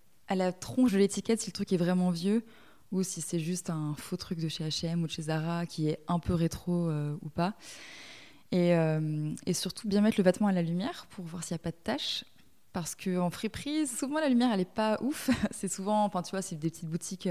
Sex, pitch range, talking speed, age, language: female, 165-195 Hz, 240 wpm, 20-39, French